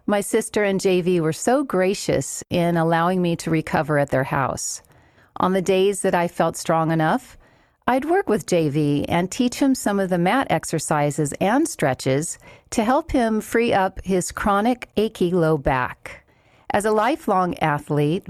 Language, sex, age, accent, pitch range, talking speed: English, female, 40-59, American, 160-230 Hz, 165 wpm